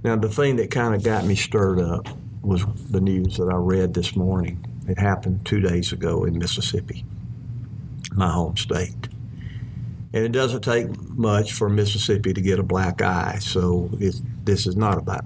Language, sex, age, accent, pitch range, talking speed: English, male, 50-69, American, 95-115 Hz, 175 wpm